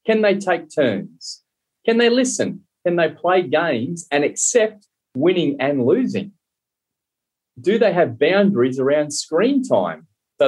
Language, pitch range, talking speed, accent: English, 125-190 Hz, 135 wpm, Australian